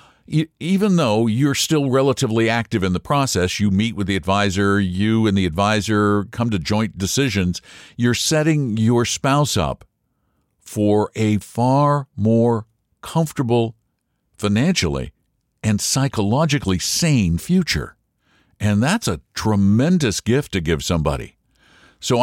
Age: 60-79